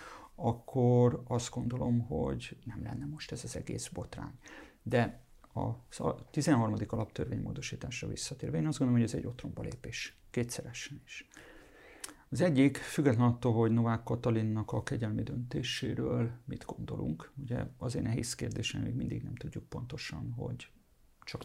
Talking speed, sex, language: 135 wpm, male, Hungarian